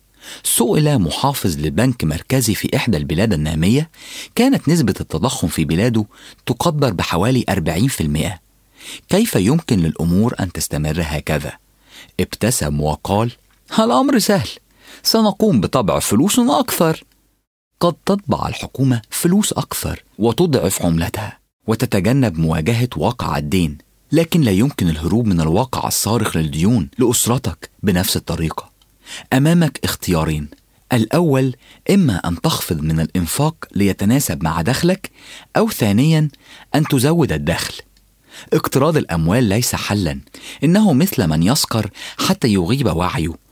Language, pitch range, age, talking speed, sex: English, 85-135 Hz, 40-59, 110 wpm, male